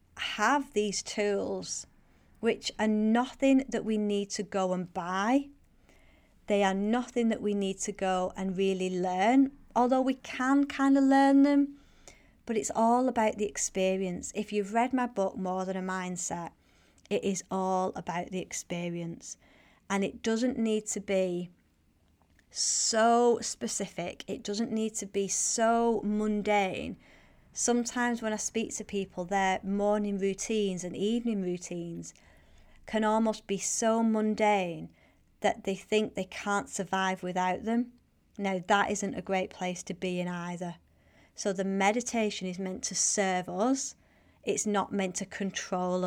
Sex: female